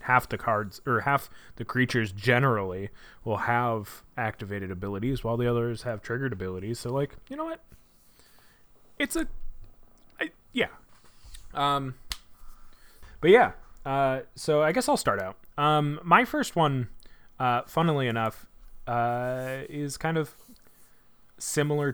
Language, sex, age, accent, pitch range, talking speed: English, male, 20-39, American, 100-135 Hz, 135 wpm